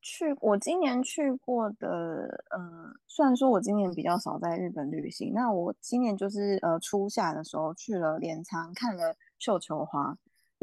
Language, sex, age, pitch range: Chinese, female, 20-39, 170-230 Hz